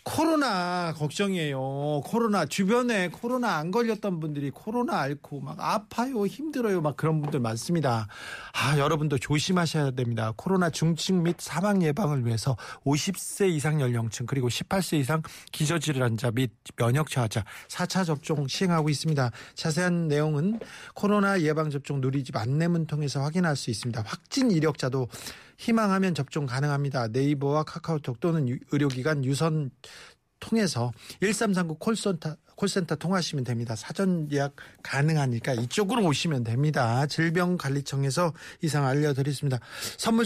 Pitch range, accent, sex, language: 140-185 Hz, native, male, Korean